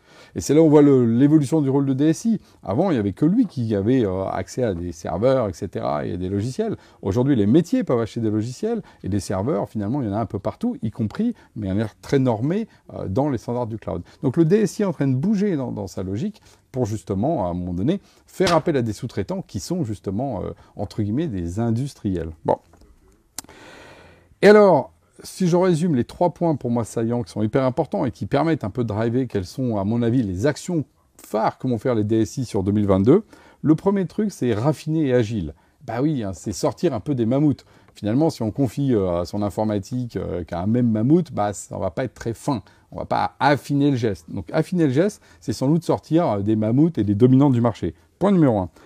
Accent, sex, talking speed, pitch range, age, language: French, male, 235 wpm, 105-155 Hz, 40-59, French